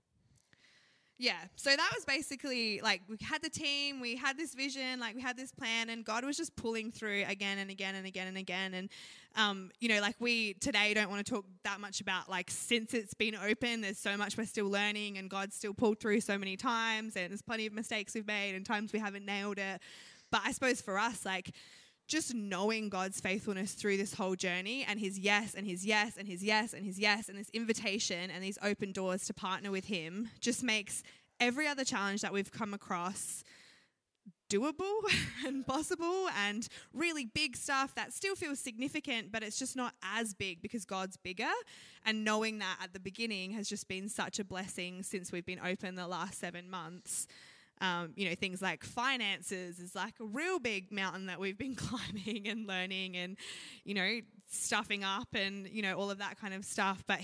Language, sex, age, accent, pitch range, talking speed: English, female, 20-39, Australian, 190-230 Hz, 210 wpm